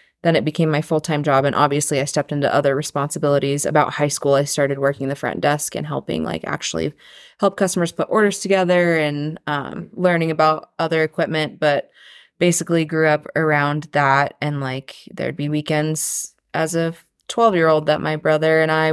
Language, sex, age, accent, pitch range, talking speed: English, female, 20-39, American, 145-165 Hz, 180 wpm